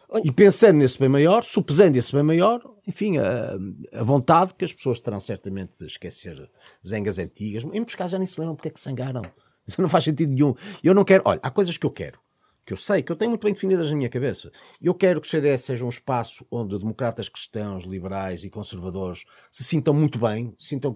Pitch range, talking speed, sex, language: 100-155 Hz, 225 wpm, male, Portuguese